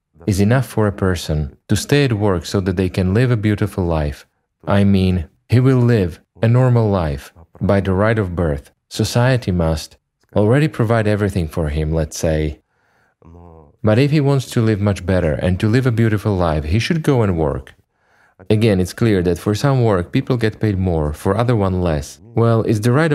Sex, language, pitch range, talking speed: male, English, 80-115 Hz, 200 wpm